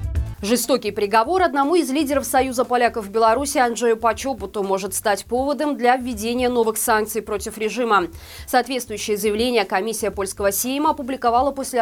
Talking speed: 135 wpm